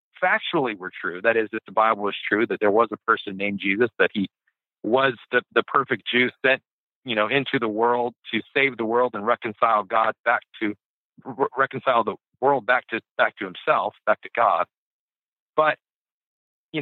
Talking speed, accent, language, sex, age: 190 wpm, American, English, male, 50-69